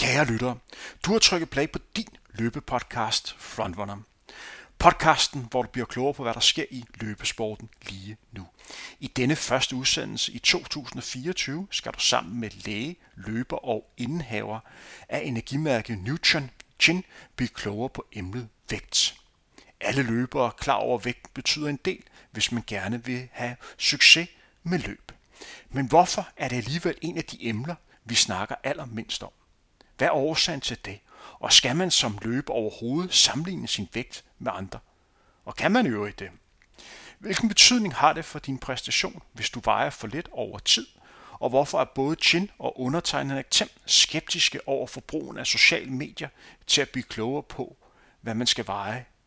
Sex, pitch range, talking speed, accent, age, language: male, 115-160 Hz, 160 wpm, native, 40-59, Danish